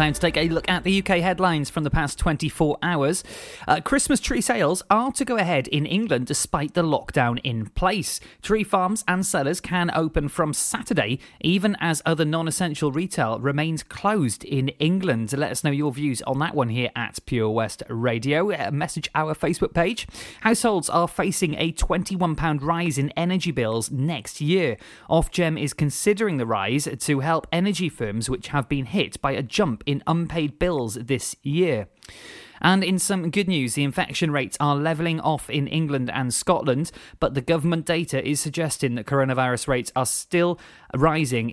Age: 30-49